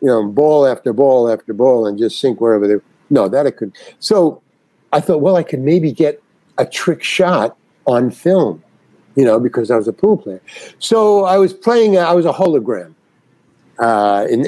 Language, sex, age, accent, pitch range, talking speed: English, male, 60-79, American, 130-180 Hz, 200 wpm